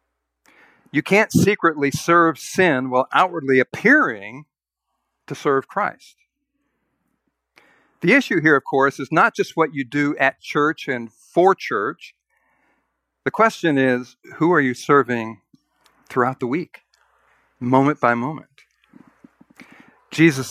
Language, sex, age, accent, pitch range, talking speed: English, male, 50-69, American, 120-165 Hz, 120 wpm